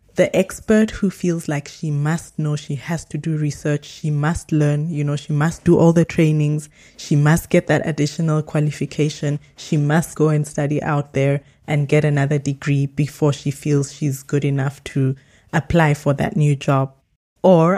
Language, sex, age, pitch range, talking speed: English, female, 20-39, 145-180 Hz, 180 wpm